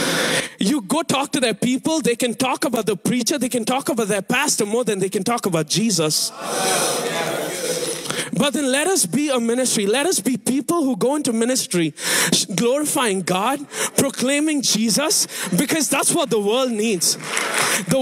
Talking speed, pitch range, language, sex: 170 wpm, 180-255 Hz, English, male